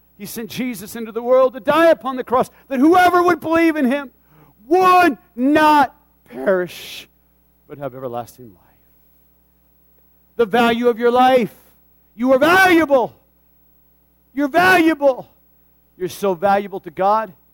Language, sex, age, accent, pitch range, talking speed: English, male, 50-69, American, 185-280 Hz, 135 wpm